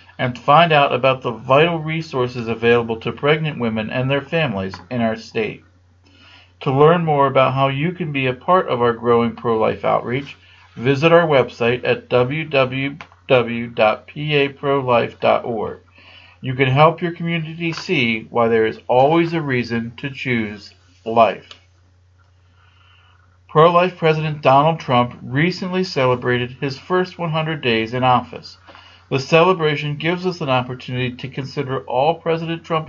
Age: 50-69